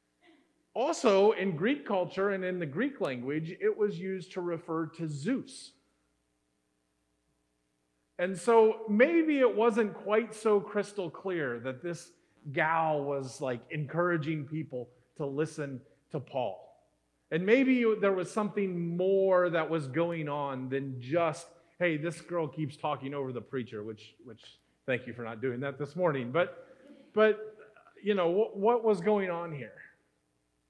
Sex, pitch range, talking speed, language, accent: male, 145-210 Hz, 150 wpm, English, American